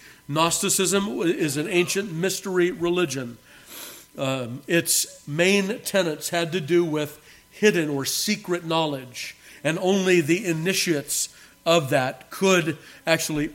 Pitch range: 145-180 Hz